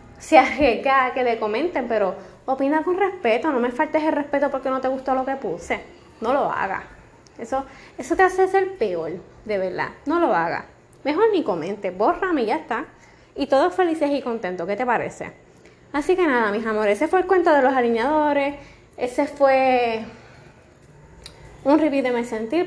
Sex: female